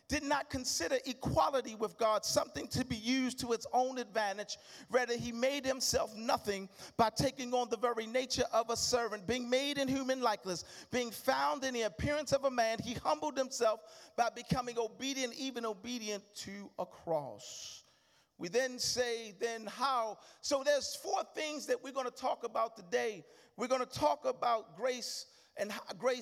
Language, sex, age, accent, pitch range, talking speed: English, male, 40-59, American, 235-290 Hz, 170 wpm